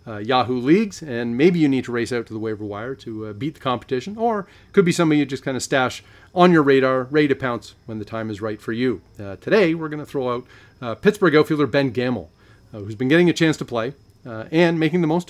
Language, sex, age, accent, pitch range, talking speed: English, male, 40-59, American, 110-145 Hz, 260 wpm